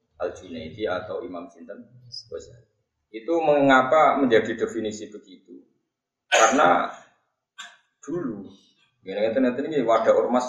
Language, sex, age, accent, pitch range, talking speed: Indonesian, male, 20-39, native, 120-180 Hz, 75 wpm